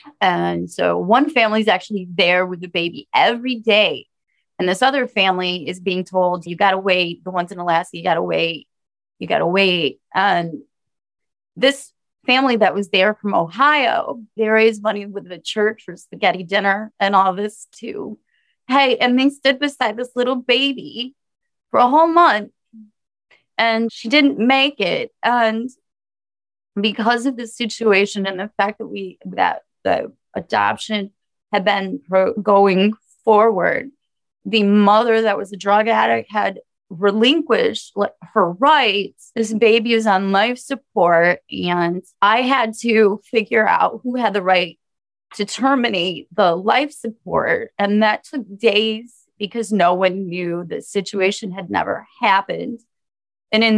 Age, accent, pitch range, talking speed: 30-49, American, 190-240 Hz, 155 wpm